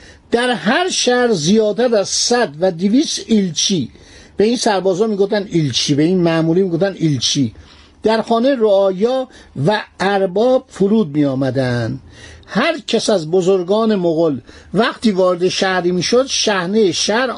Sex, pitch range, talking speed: male, 170-225 Hz, 135 wpm